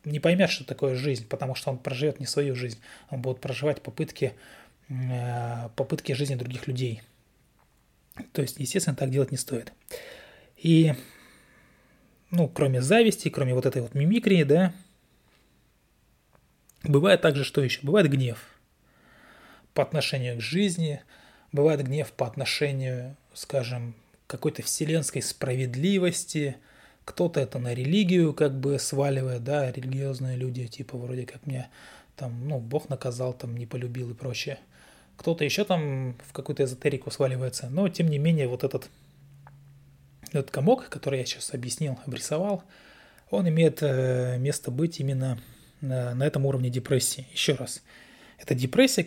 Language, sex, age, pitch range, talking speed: Russian, male, 20-39, 130-150 Hz, 140 wpm